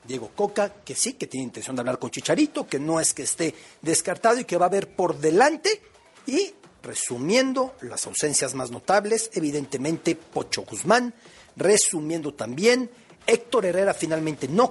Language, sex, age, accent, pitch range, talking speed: Spanish, male, 40-59, Mexican, 145-225 Hz, 160 wpm